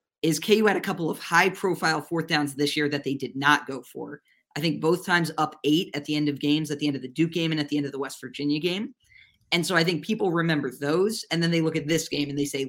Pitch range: 145-180 Hz